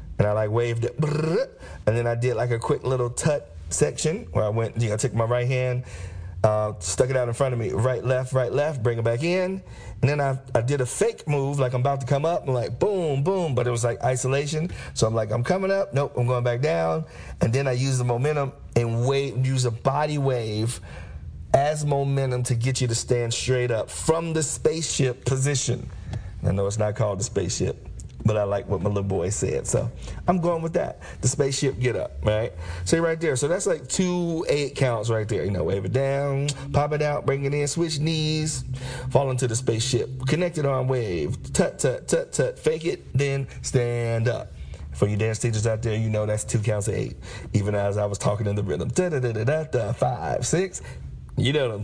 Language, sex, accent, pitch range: English, male, American, 110-140 Hz